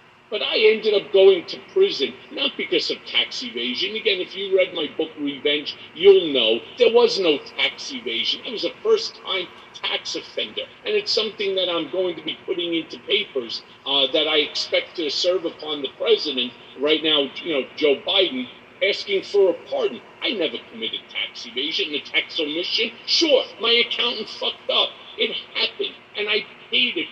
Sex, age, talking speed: male, 50-69, 180 wpm